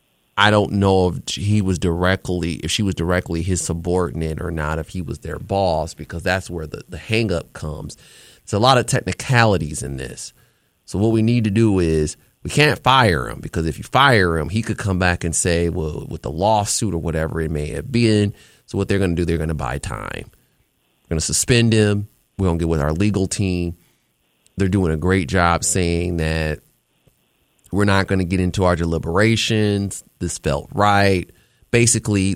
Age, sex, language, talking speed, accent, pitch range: 30-49, male, English, 200 wpm, American, 80-100 Hz